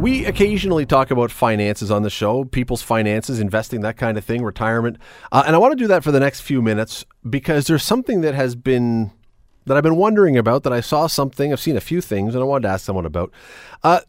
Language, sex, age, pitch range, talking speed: English, male, 30-49, 105-145 Hz, 240 wpm